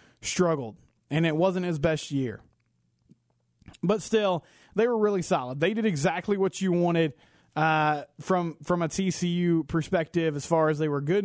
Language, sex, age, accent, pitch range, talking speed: English, male, 20-39, American, 155-195 Hz, 165 wpm